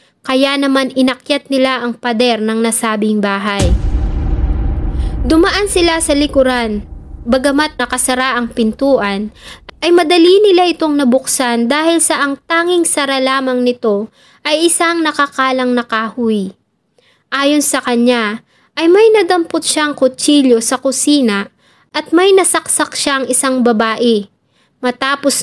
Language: English